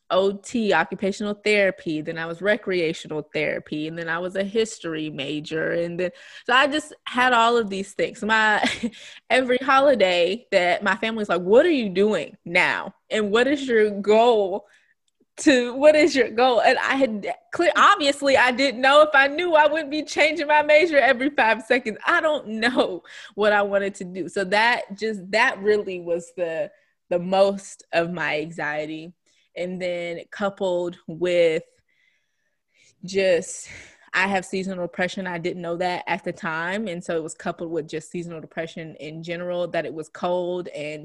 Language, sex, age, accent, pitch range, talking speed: English, female, 20-39, American, 170-230 Hz, 175 wpm